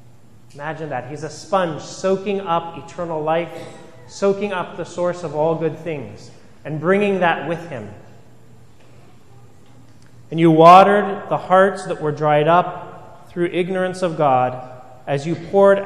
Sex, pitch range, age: male, 125-165 Hz, 30-49